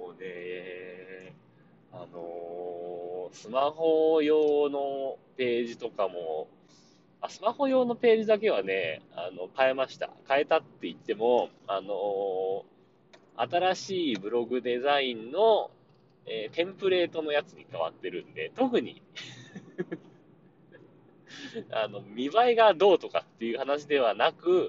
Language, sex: Japanese, male